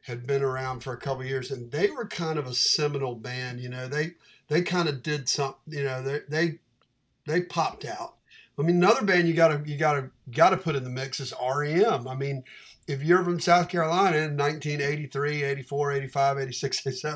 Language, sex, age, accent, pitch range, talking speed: English, male, 50-69, American, 130-160 Hz, 190 wpm